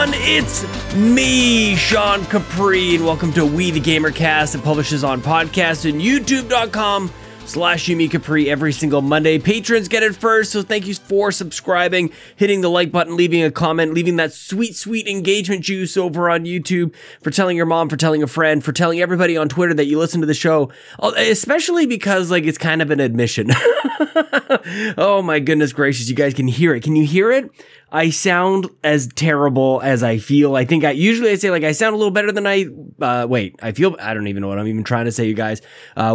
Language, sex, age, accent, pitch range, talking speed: English, male, 20-39, American, 135-190 Hz, 210 wpm